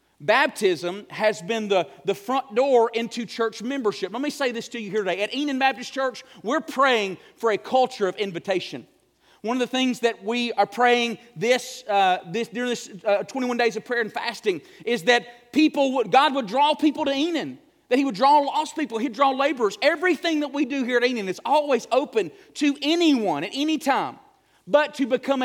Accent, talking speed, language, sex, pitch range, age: American, 205 wpm, English, male, 220-275 Hz, 40-59